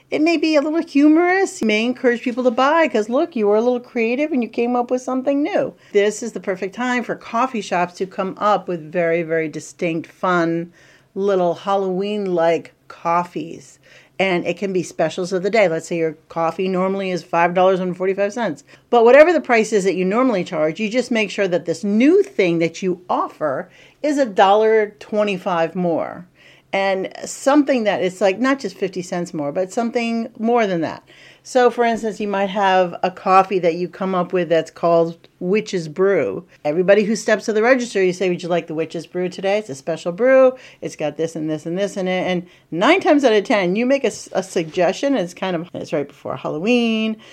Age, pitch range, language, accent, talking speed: 50-69, 175-245 Hz, English, American, 205 wpm